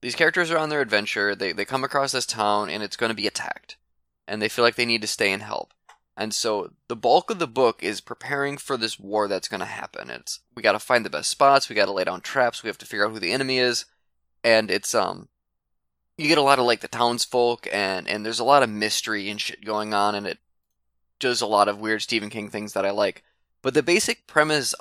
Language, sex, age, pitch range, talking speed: English, male, 20-39, 100-130 Hz, 255 wpm